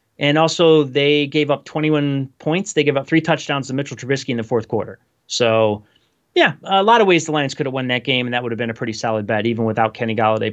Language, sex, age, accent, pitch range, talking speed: English, male, 30-49, American, 115-145 Hz, 255 wpm